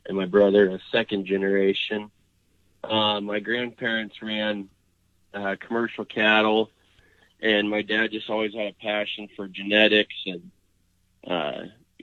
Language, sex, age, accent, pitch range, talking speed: English, male, 20-39, American, 95-105 Hz, 125 wpm